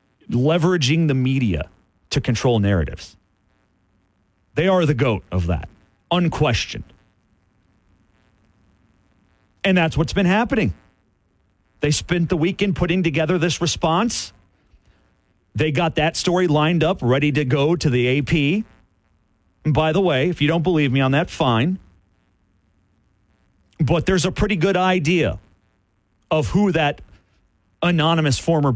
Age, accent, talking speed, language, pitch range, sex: 40-59, American, 125 wpm, English, 95-150 Hz, male